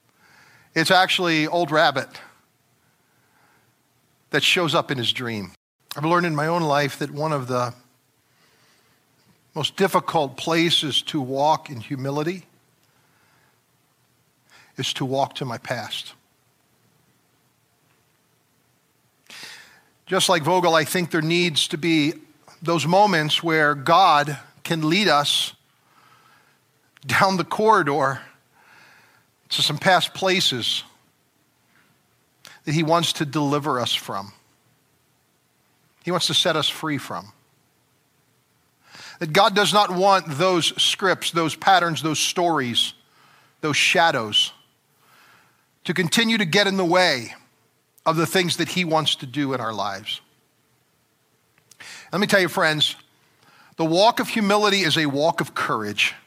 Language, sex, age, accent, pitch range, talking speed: English, male, 50-69, American, 140-175 Hz, 125 wpm